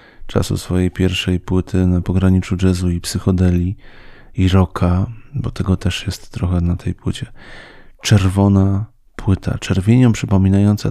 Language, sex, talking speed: Polish, male, 125 wpm